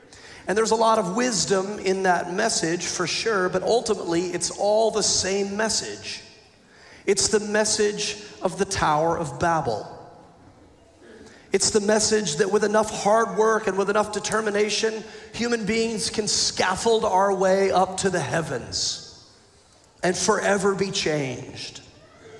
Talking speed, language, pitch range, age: 140 wpm, English, 165-215 Hz, 40-59